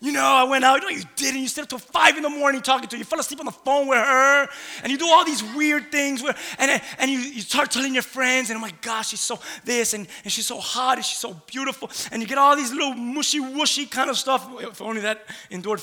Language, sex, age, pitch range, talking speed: English, male, 20-39, 260-315 Hz, 285 wpm